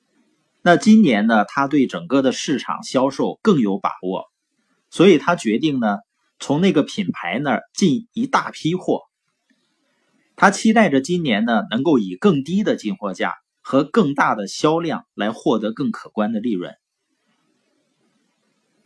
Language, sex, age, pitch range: Chinese, male, 30-49, 155-225 Hz